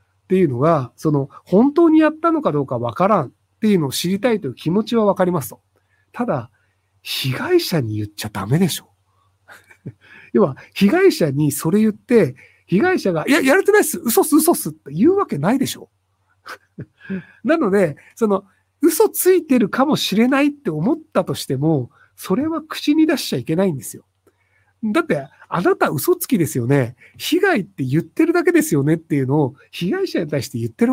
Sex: male